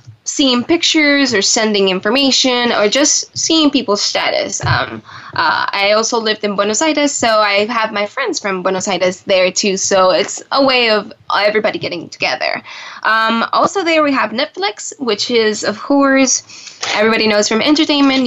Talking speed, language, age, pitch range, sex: 165 wpm, English, 10-29, 200-265 Hz, female